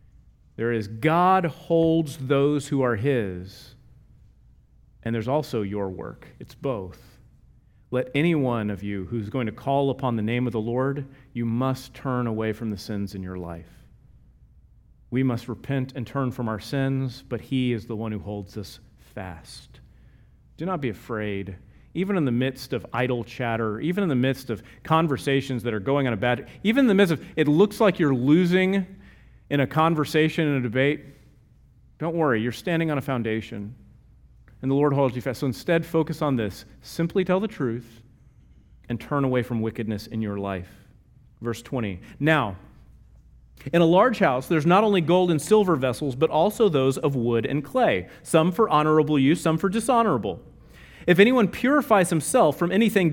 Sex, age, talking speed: male, 40-59, 180 wpm